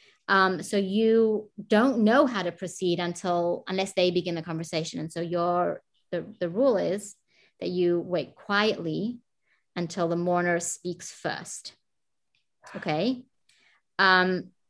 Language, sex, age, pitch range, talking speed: English, female, 30-49, 180-220 Hz, 130 wpm